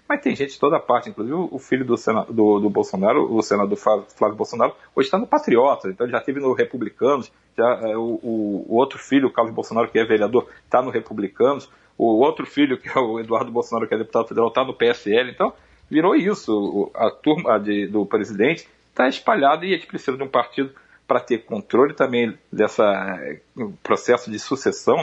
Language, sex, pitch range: Portuguese, male, 110-135 Hz